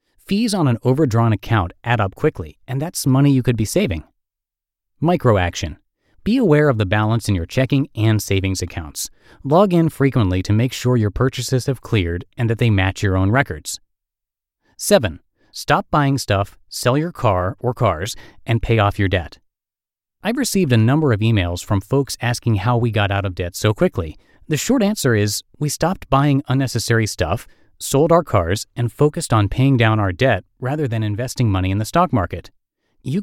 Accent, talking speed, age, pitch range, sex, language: American, 185 wpm, 30-49, 100-140 Hz, male, English